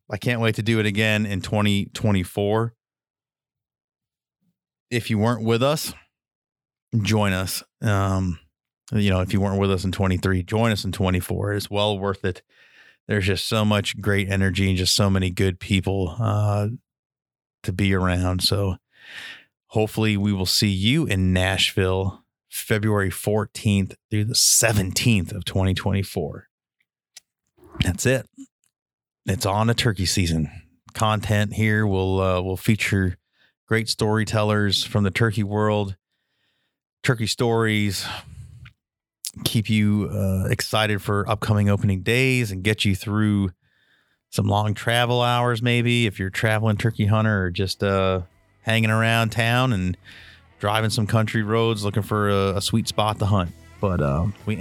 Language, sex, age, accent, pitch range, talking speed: English, male, 30-49, American, 95-110 Hz, 145 wpm